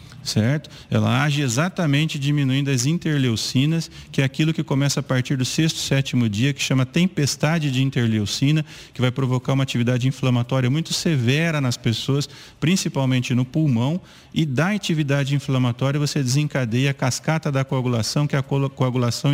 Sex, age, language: male, 40-59, Portuguese